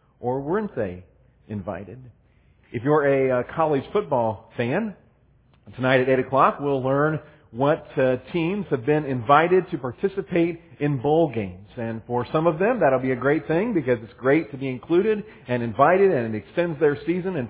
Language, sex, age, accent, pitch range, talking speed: English, male, 40-59, American, 120-160 Hz, 180 wpm